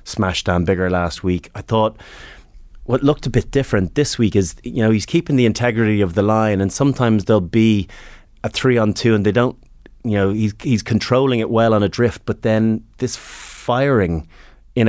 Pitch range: 95-115 Hz